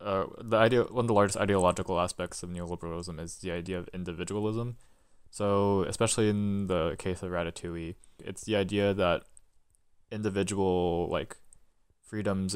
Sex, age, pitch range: male, 20-39, 90-100 Hz